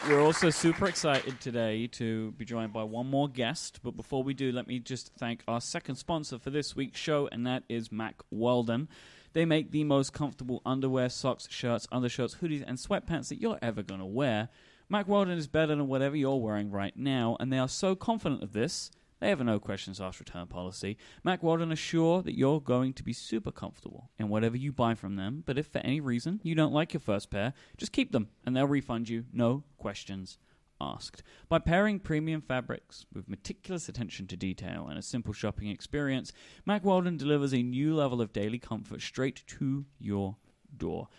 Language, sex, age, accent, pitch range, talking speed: English, male, 30-49, British, 115-150 Hz, 200 wpm